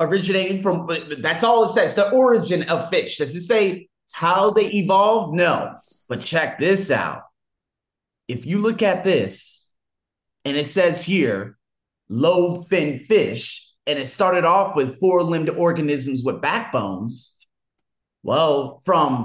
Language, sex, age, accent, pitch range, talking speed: English, male, 30-49, American, 155-200 Hz, 140 wpm